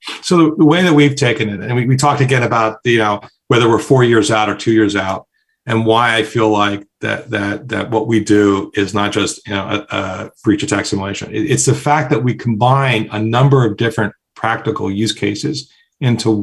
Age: 40-59